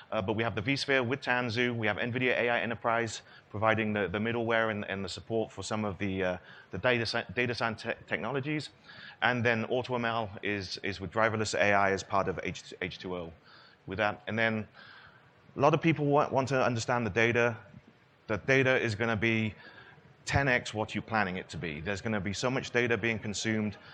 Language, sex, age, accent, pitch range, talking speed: English, male, 30-49, British, 100-120 Hz, 200 wpm